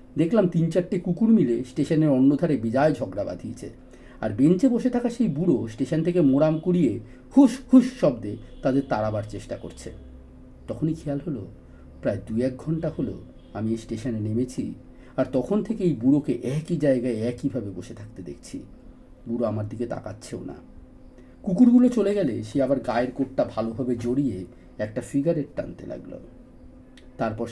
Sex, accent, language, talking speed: male, native, Bengali, 150 wpm